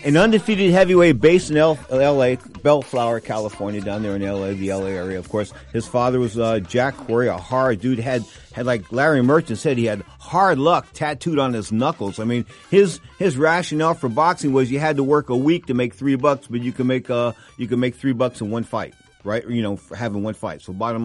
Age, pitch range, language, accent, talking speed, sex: 50-69, 110-135 Hz, English, American, 235 wpm, male